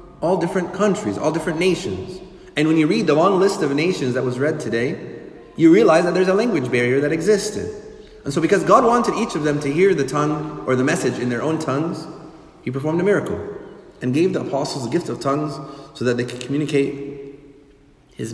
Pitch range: 130-170 Hz